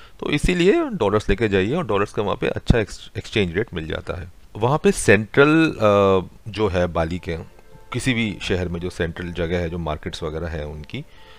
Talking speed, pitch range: 190 wpm, 90-115 Hz